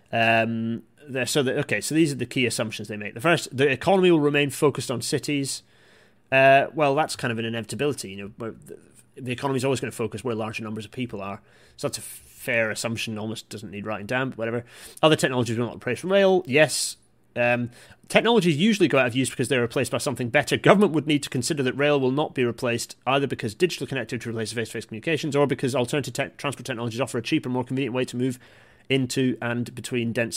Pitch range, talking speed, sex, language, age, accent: 115-145 Hz, 225 wpm, male, English, 30-49, British